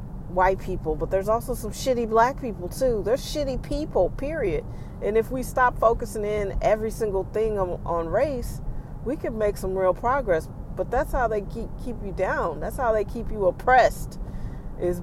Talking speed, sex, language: 180 wpm, female, English